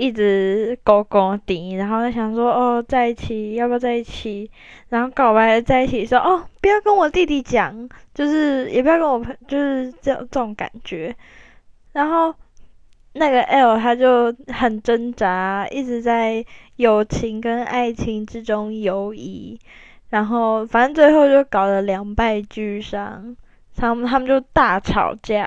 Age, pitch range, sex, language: 10-29, 210-255 Hz, female, Chinese